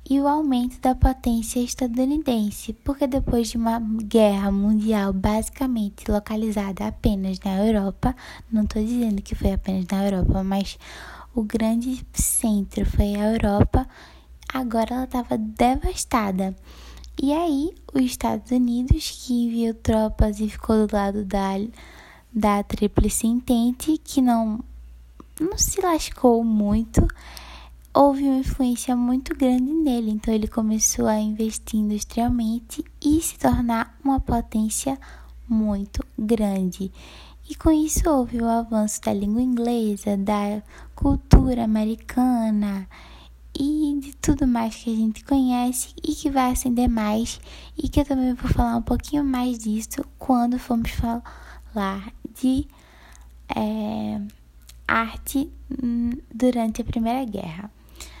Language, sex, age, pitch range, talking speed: Portuguese, female, 10-29, 210-255 Hz, 125 wpm